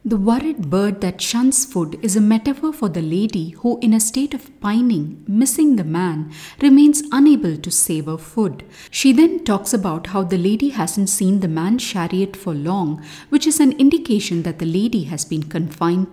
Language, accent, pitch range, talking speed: English, Indian, 165-240 Hz, 185 wpm